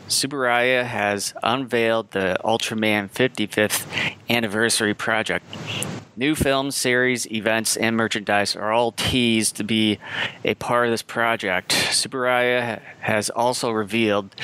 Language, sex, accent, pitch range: English, male, American, 105-120 Hz